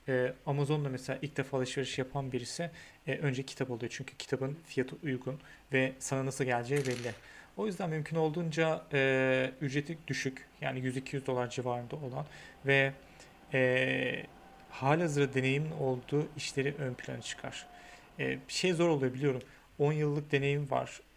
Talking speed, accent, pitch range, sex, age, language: 135 wpm, native, 130-145 Hz, male, 40-59, Turkish